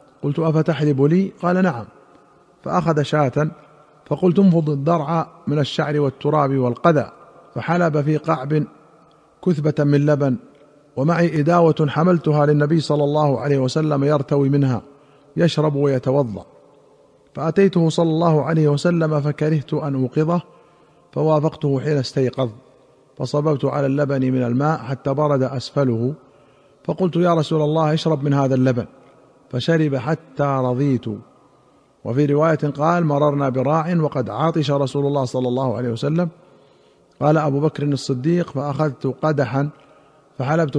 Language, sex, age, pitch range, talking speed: Arabic, male, 50-69, 140-155 Hz, 120 wpm